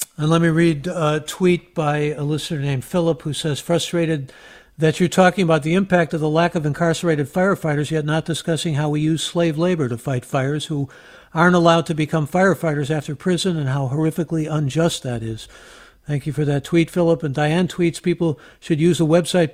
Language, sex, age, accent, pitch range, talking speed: English, male, 60-79, American, 145-175 Hz, 200 wpm